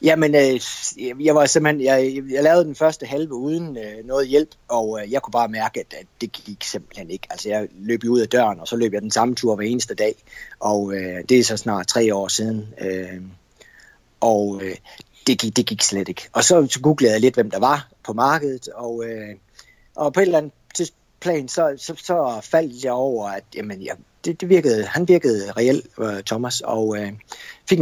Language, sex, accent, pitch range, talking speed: Danish, male, native, 105-145 Hz, 185 wpm